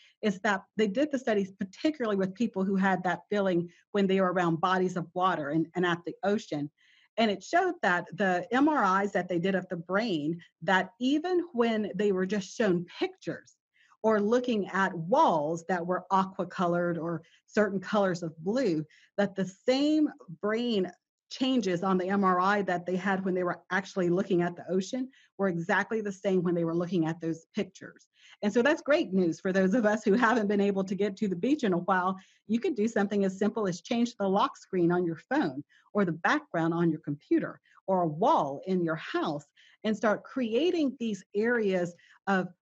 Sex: female